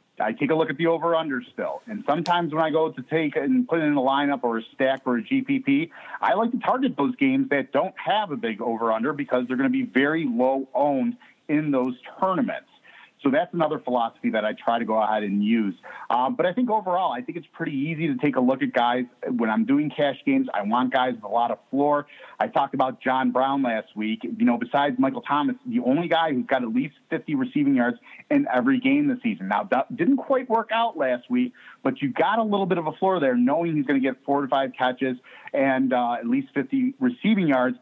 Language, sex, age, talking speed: English, male, 30-49, 240 wpm